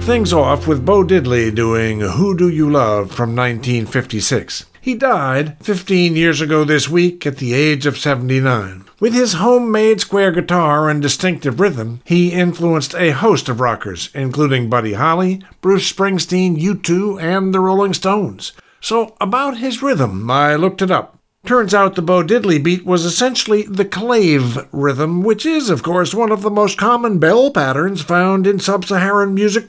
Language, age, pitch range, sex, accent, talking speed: English, 50-69, 145-210 Hz, male, American, 165 wpm